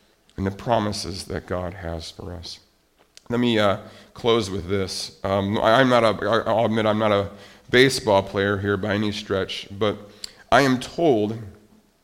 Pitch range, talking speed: 100-125 Hz, 170 wpm